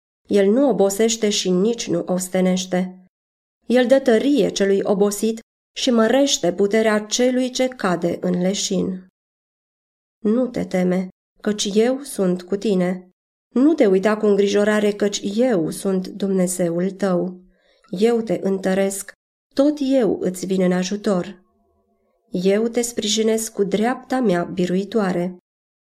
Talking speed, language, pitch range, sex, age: 125 wpm, Romanian, 185-235 Hz, female, 20-39